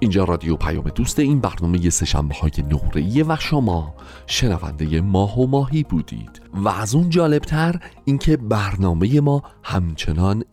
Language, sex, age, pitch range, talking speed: Persian, male, 40-59, 100-145 Hz, 135 wpm